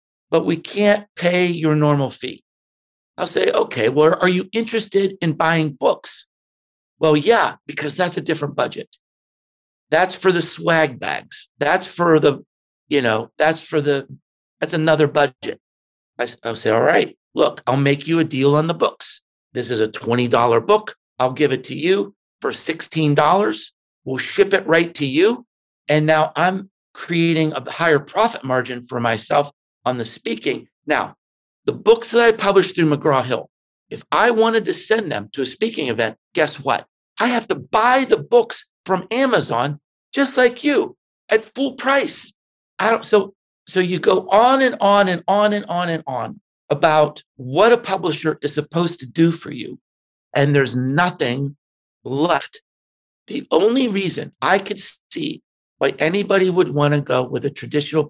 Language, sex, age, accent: English, male, 50-69, American